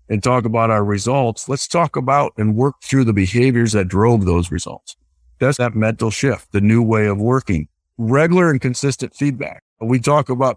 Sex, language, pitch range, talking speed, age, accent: male, English, 115-145 Hz, 185 wpm, 50-69, American